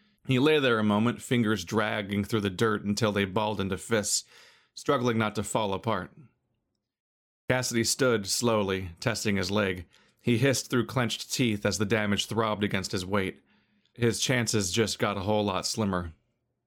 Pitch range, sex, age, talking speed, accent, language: 105-120 Hz, male, 40-59, 165 wpm, American, English